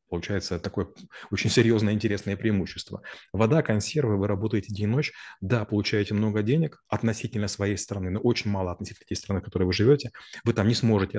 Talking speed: 180 wpm